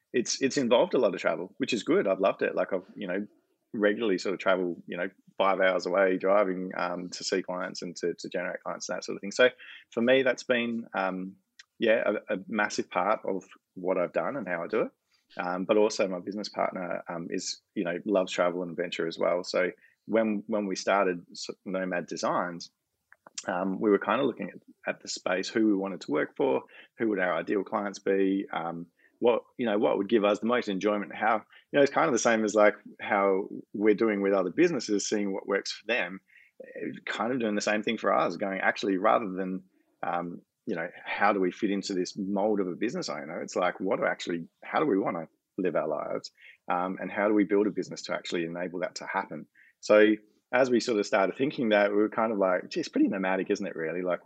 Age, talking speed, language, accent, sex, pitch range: 20-39, 235 wpm, English, Australian, male, 90-105 Hz